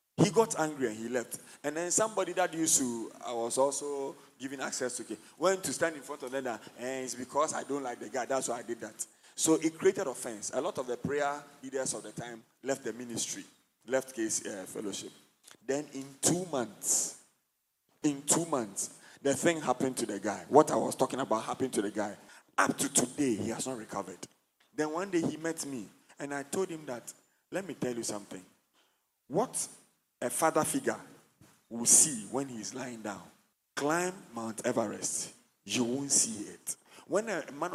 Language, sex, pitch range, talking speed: English, male, 120-155 Hz, 195 wpm